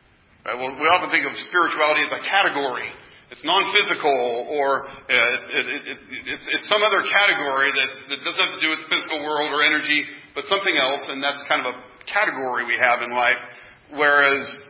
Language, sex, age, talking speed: English, male, 40-59, 175 wpm